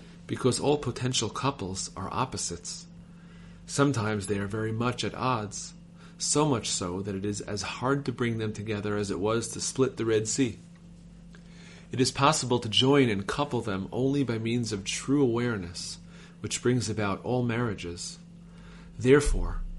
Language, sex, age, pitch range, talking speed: English, male, 40-59, 105-140 Hz, 160 wpm